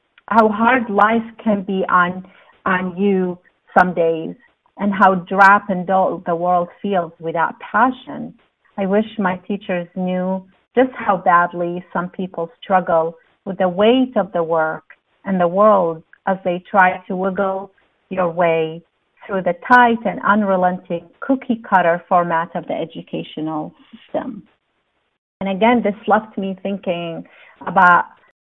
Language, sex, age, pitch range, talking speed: English, female, 40-59, 180-225 Hz, 135 wpm